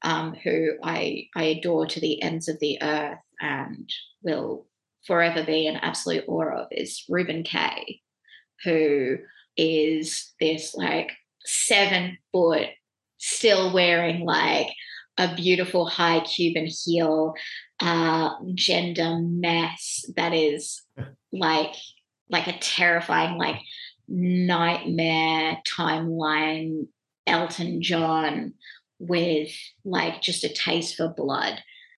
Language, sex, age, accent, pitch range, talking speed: English, female, 20-39, Australian, 160-185 Hz, 105 wpm